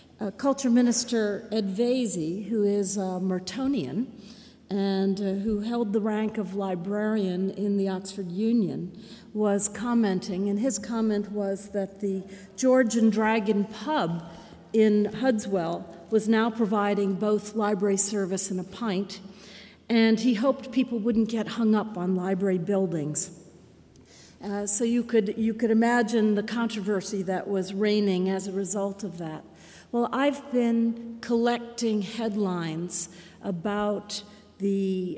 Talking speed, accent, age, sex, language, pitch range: 135 wpm, American, 50-69, female, English, 195-225 Hz